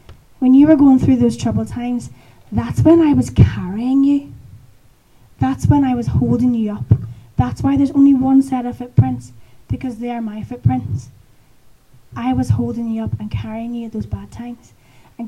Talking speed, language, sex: 185 wpm, English, female